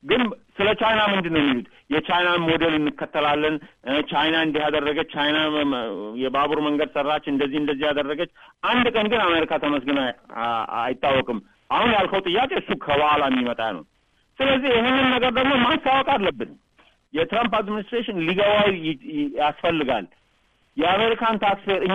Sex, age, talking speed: male, 50-69, 65 wpm